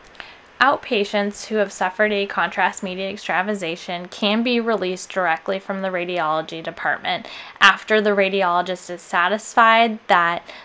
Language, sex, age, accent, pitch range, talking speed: English, female, 10-29, American, 180-215 Hz, 125 wpm